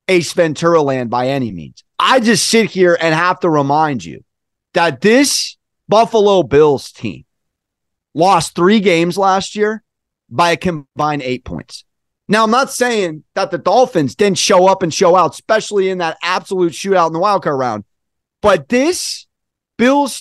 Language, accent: English, American